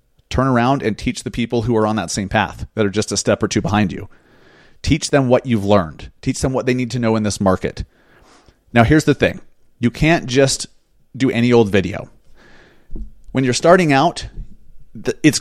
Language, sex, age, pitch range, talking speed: English, male, 30-49, 110-130 Hz, 205 wpm